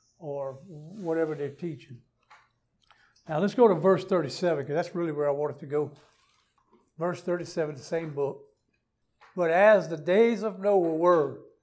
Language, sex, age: English, male, 60-79